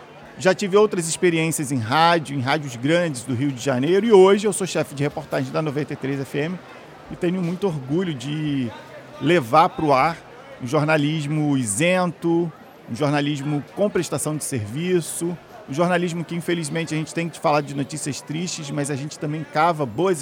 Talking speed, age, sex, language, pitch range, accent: 170 wpm, 40-59, male, Portuguese, 140-170 Hz, Brazilian